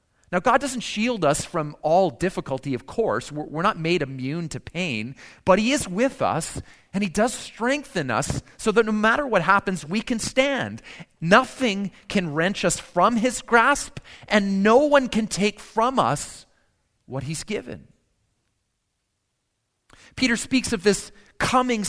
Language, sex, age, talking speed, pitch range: English, male, 40-59, 155 wpm, 140-210 Hz